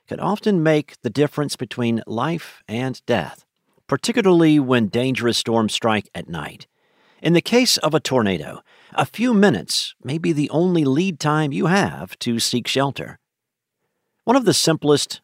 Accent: American